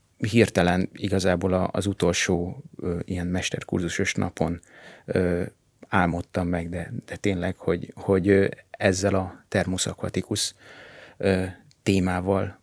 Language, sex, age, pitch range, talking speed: Hungarian, male, 30-49, 90-110 Hz, 85 wpm